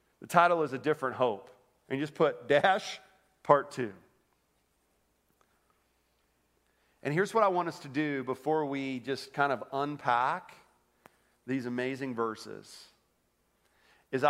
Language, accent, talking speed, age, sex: English, American, 130 wpm, 40-59, male